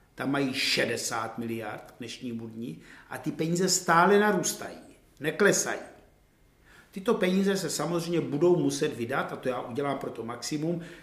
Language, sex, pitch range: Czech, male, 130-170 Hz